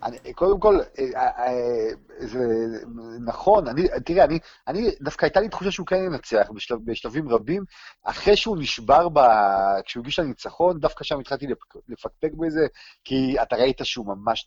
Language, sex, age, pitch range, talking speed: Hebrew, male, 40-59, 135-190 Hz, 135 wpm